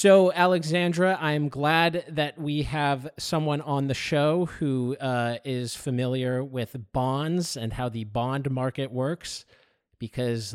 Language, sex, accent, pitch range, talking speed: English, male, American, 125-170 Hz, 135 wpm